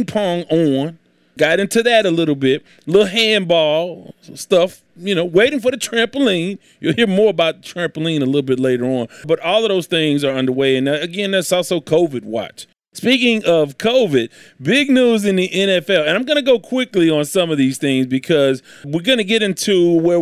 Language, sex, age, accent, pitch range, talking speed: English, male, 30-49, American, 145-195 Hz, 200 wpm